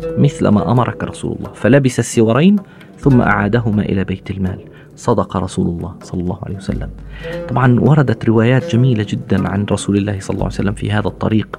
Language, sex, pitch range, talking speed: Arabic, male, 115-160 Hz, 175 wpm